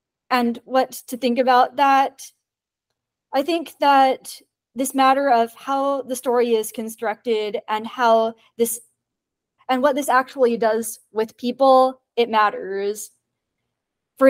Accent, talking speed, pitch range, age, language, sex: American, 125 wpm, 225-270 Hz, 30-49, English, female